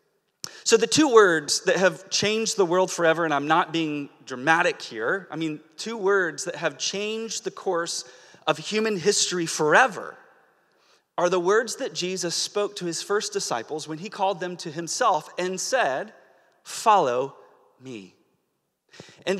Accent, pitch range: American, 180-245 Hz